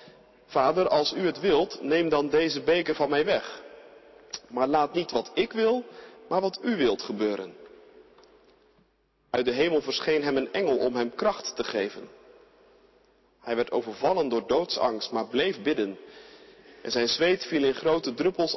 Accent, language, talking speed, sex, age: Dutch, Dutch, 160 wpm, male, 40-59